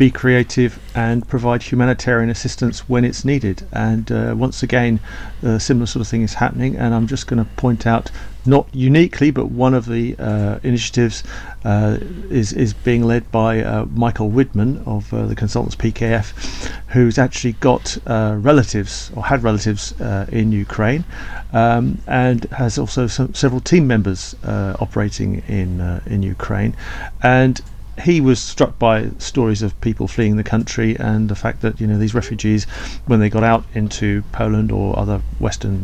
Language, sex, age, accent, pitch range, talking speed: English, male, 50-69, British, 105-125 Hz, 170 wpm